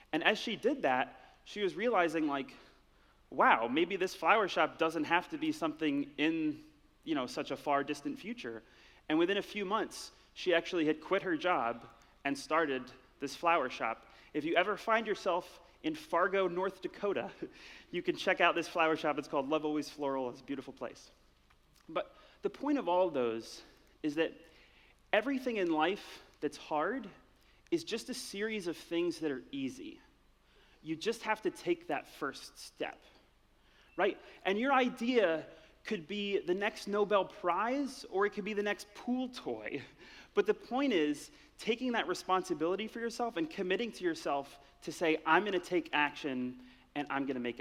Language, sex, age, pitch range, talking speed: English, male, 30-49, 150-225 Hz, 180 wpm